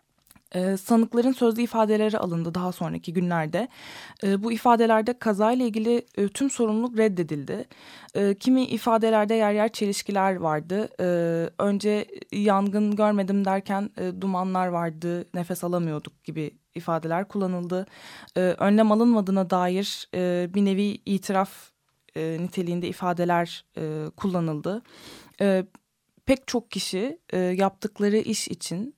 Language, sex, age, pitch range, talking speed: Turkish, female, 20-39, 175-215 Hz, 95 wpm